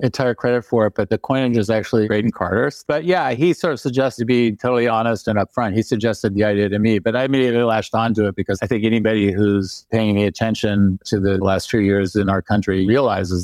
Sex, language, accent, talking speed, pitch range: male, English, American, 230 wpm, 100-120 Hz